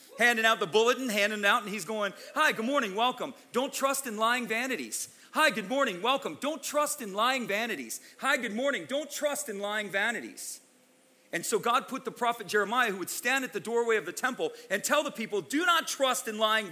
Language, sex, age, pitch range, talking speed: English, male, 40-59, 220-275 Hz, 220 wpm